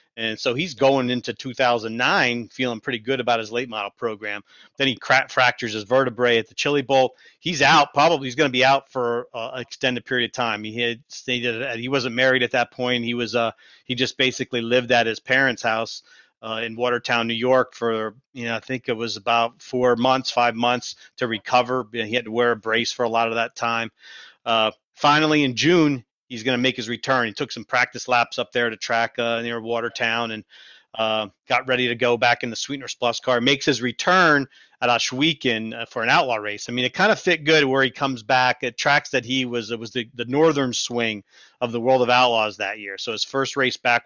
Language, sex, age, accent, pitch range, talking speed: English, male, 40-59, American, 115-130 Hz, 225 wpm